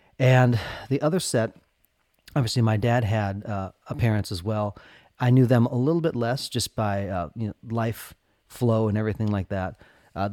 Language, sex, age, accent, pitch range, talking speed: English, male, 30-49, American, 95-115 Hz, 185 wpm